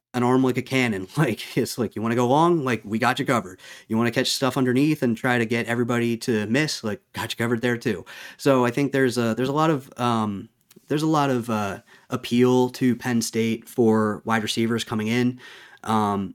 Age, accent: 30-49, American